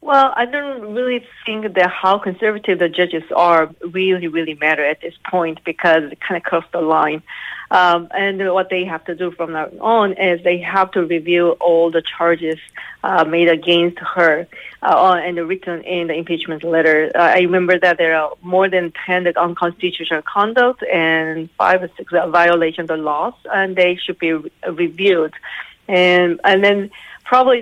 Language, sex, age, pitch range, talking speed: English, female, 40-59, 165-190 Hz, 175 wpm